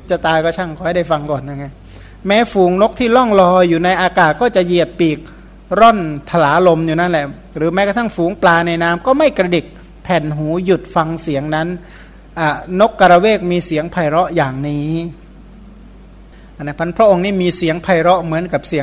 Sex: male